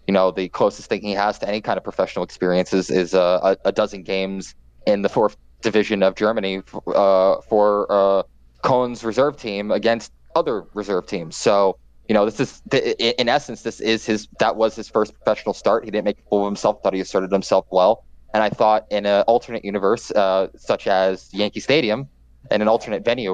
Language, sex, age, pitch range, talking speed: English, male, 20-39, 95-110 Hz, 205 wpm